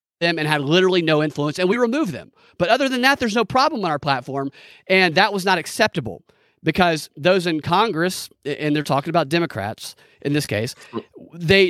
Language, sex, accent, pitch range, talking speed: English, male, American, 140-185 Hz, 195 wpm